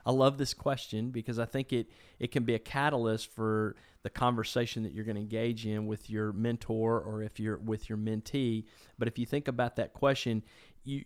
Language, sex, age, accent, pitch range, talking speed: English, male, 40-59, American, 115-130 Hz, 210 wpm